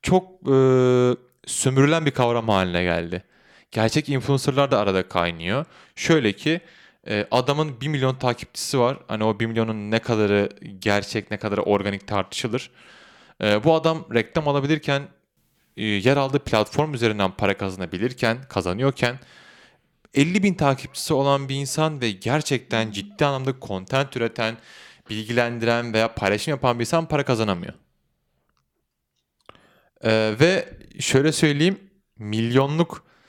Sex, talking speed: male, 125 wpm